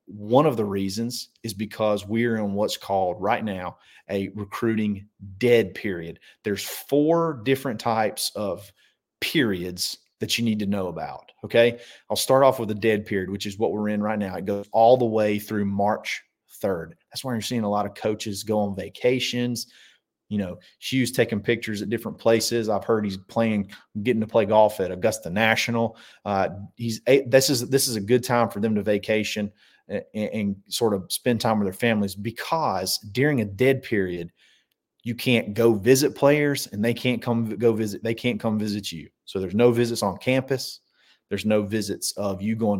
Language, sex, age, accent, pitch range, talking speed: English, male, 30-49, American, 105-120 Hz, 190 wpm